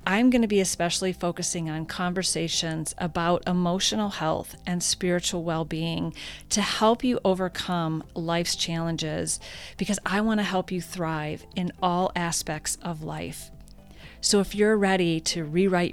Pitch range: 165-190 Hz